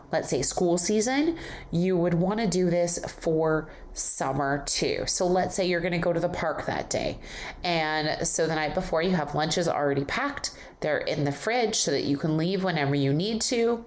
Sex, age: female, 30-49